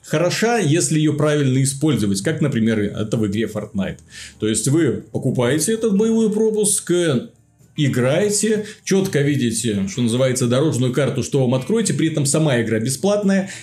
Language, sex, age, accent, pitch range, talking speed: Russian, male, 30-49, native, 125-180 Hz, 145 wpm